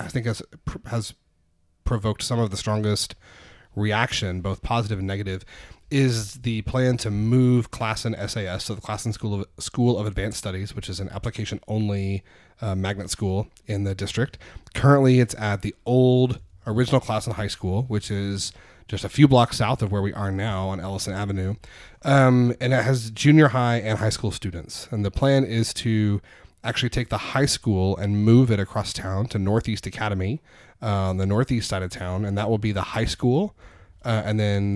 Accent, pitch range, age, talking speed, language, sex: American, 95-115 Hz, 30-49, 195 wpm, English, male